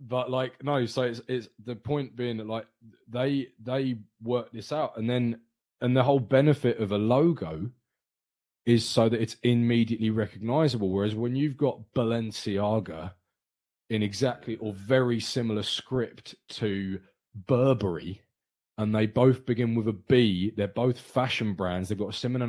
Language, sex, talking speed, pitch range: English, male, 155 wpm, 105-125 Hz